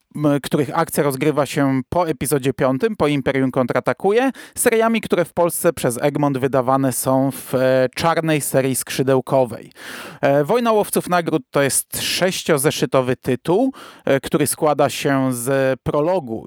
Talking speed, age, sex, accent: 125 wpm, 30-49, male, native